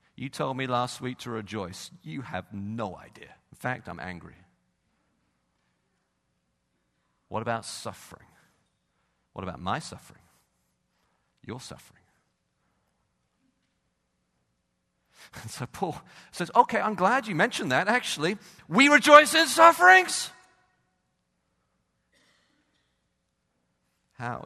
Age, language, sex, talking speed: 50-69, English, male, 100 wpm